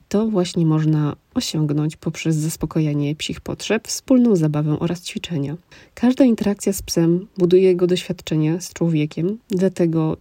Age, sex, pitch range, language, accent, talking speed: 20-39, female, 165-190 Hz, Polish, native, 130 wpm